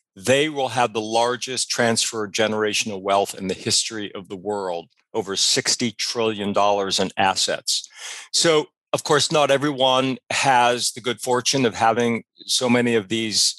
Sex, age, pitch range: male, 40-59, 105-125 Hz